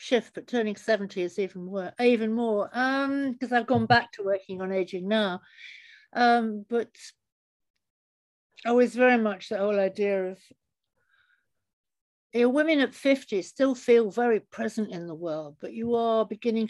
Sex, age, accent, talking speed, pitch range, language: female, 60-79, British, 160 wpm, 170-225 Hz, English